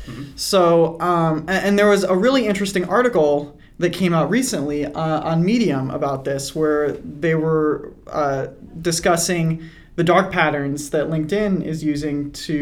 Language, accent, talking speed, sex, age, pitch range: English, American, 150 wpm, male, 20-39, 155-190 Hz